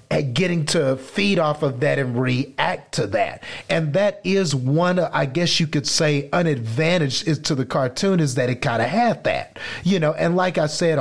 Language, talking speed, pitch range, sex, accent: English, 215 wpm, 130-165 Hz, male, American